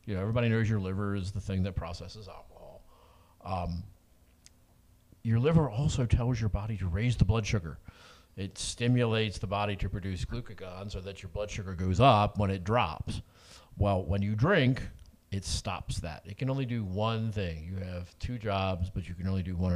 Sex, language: male, English